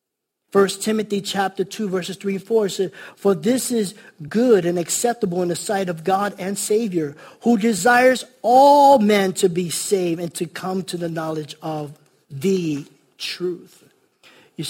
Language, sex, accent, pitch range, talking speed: English, male, American, 150-190 Hz, 165 wpm